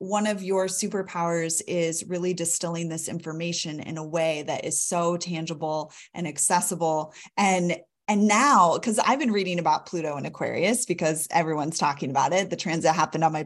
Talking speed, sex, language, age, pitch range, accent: 175 wpm, female, English, 20-39, 170-215 Hz, American